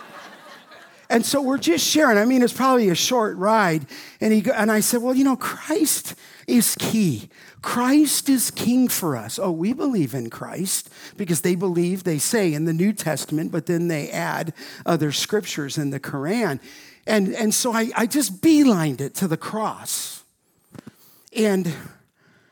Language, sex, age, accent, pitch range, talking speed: English, male, 50-69, American, 170-230 Hz, 170 wpm